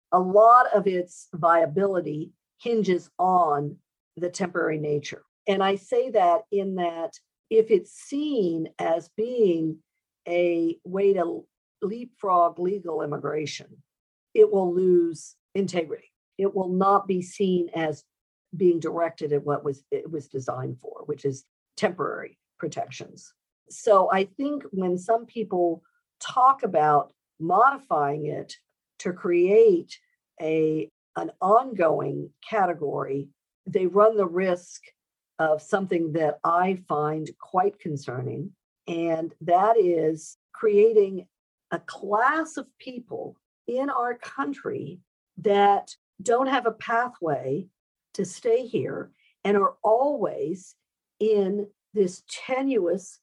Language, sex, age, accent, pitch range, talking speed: English, female, 50-69, American, 165-230 Hz, 115 wpm